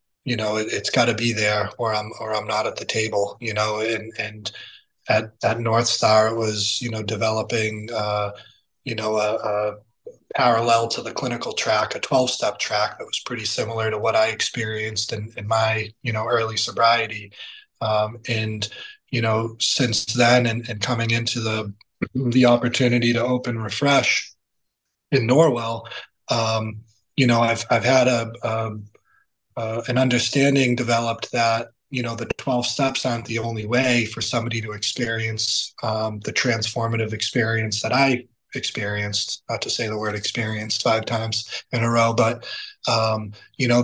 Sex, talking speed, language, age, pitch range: male, 165 wpm, English, 20-39, 110-125 Hz